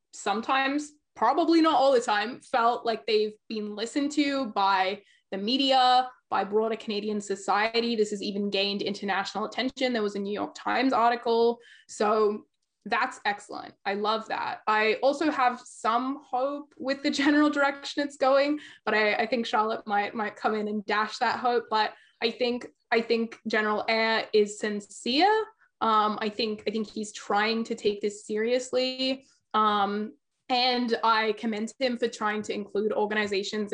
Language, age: English, 20-39